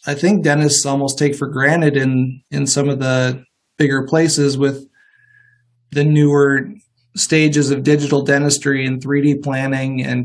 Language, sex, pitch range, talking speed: English, male, 130-155 Hz, 145 wpm